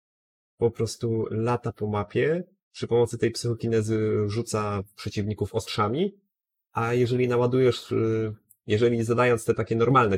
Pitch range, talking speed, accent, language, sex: 100-120 Hz, 120 wpm, native, Polish, male